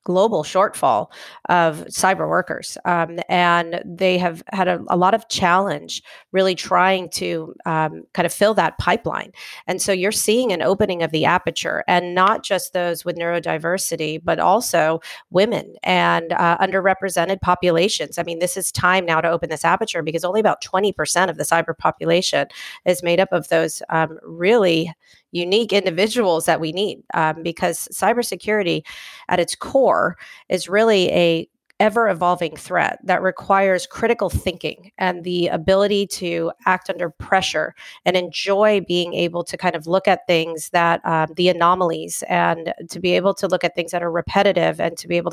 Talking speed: 170 wpm